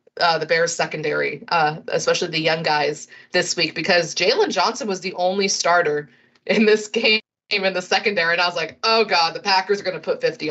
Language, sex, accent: English, female, American